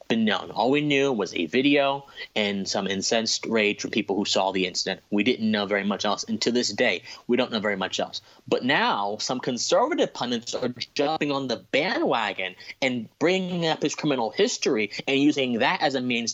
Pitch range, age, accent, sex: 110-150 Hz, 30-49, American, male